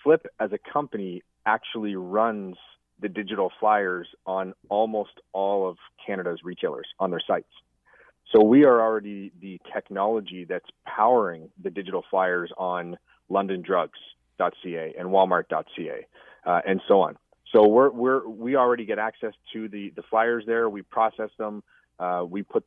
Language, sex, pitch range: English, male, 95-110 Hz